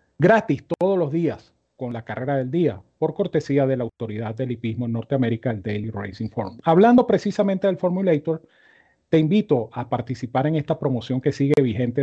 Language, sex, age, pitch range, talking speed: Spanish, male, 40-59, 125-165 Hz, 180 wpm